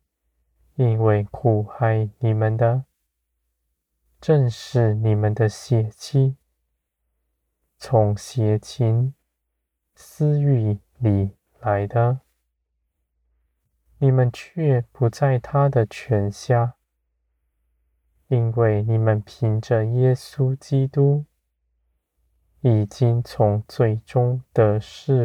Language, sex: Chinese, male